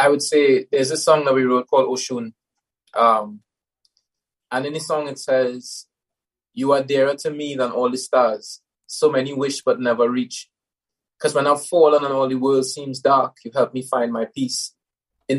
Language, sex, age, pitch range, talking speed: English, male, 20-39, 125-150 Hz, 190 wpm